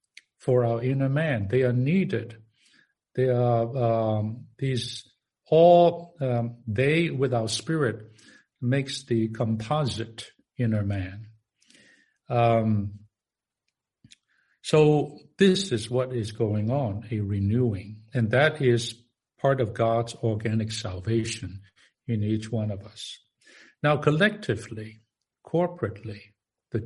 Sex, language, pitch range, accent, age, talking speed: male, English, 110-135 Hz, American, 60-79, 110 wpm